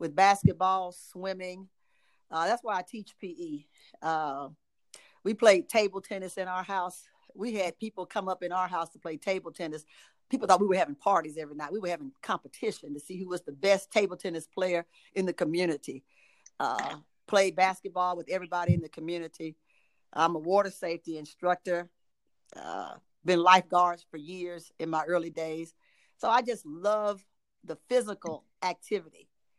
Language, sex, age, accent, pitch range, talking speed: English, female, 50-69, American, 170-200 Hz, 165 wpm